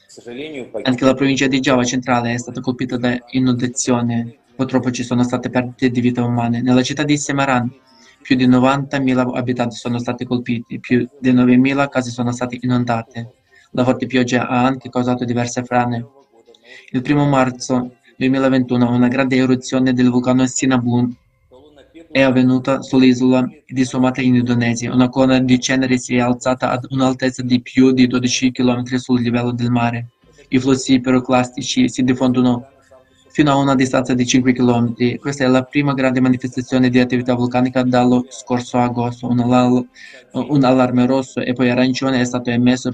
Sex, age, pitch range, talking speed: male, 20-39, 125-130 Hz, 160 wpm